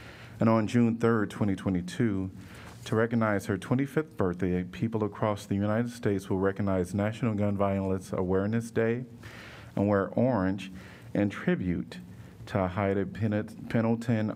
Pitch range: 95-115 Hz